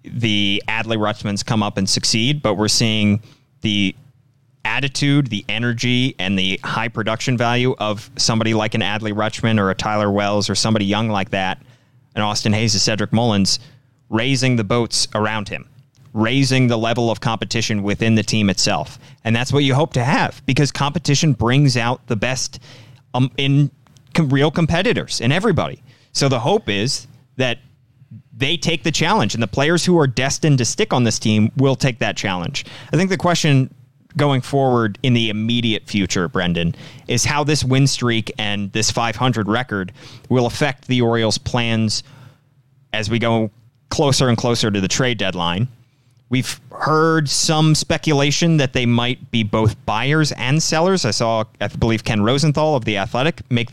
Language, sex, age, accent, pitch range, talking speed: English, male, 30-49, American, 110-140 Hz, 170 wpm